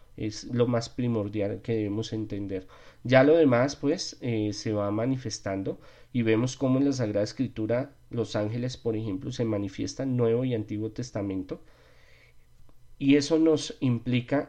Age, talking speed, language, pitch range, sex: 40-59, 155 wpm, Spanish, 105-125 Hz, male